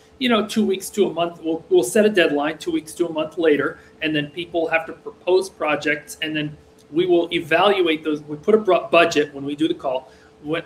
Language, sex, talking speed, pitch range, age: English, male, 230 wpm, 155-185 Hz, 40-59